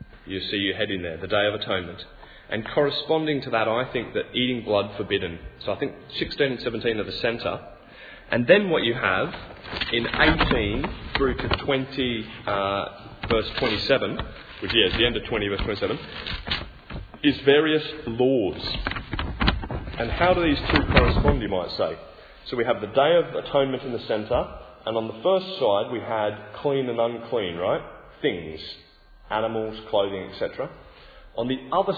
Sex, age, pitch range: male, 30-49, 100-140 Hz